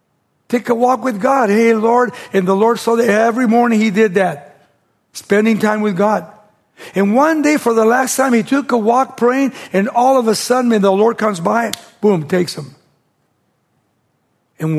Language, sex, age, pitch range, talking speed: English, male, 60-79, 150-220 Hz, 185 wpm